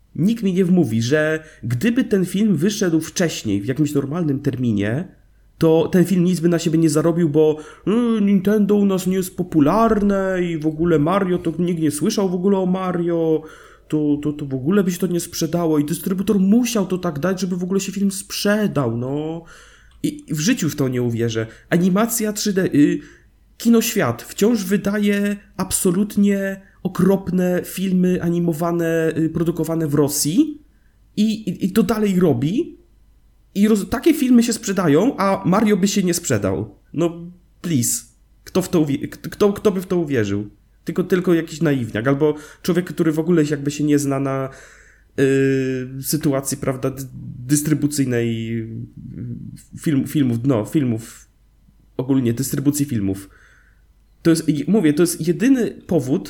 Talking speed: 160 wpm